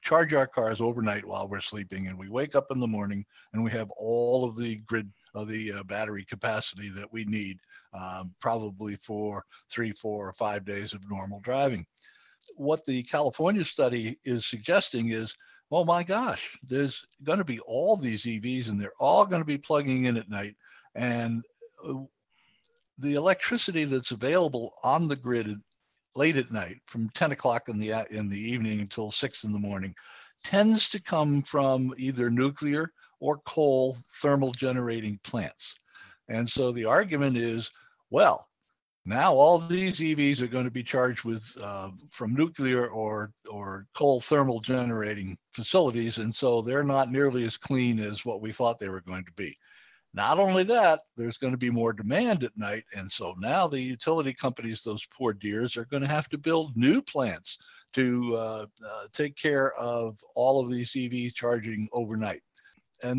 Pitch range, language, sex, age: 110-140 Hz, English, male, 60-79